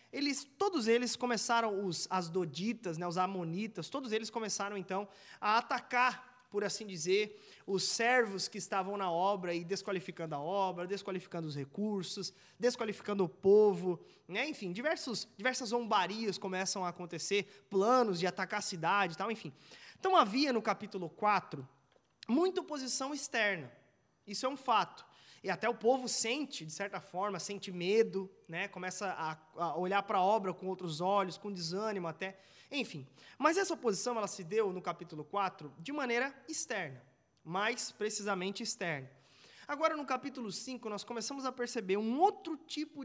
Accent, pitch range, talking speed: Brazilian, 185-235 Hz, 150 wpm